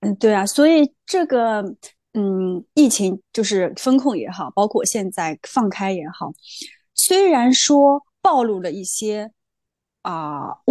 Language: Chinese